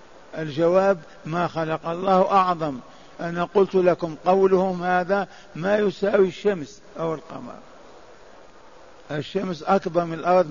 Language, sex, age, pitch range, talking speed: Arabic, male, 50-69, 155-185 Hz, 110 wpm